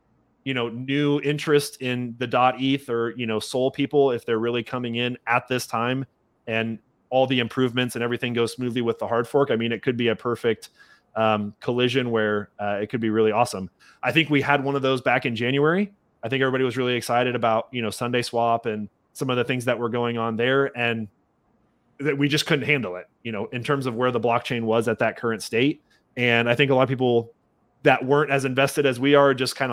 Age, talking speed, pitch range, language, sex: 30-49, 230 wpm, 115-135 Hz, English, male